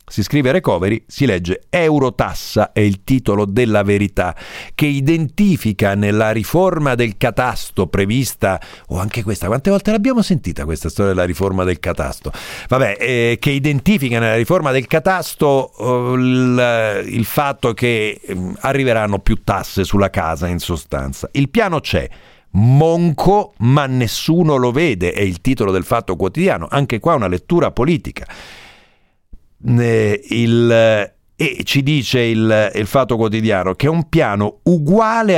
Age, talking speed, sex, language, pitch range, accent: 50-69, 140 wpm, male, Italian, 100-140 Hz, native